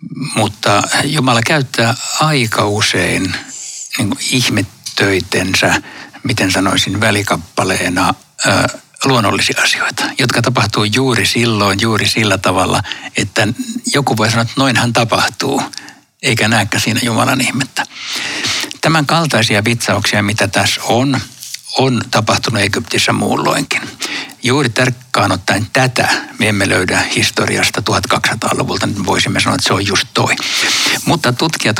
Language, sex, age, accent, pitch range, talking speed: Finnish, male, 60-79, native, 105-125 Hz, 110 wpm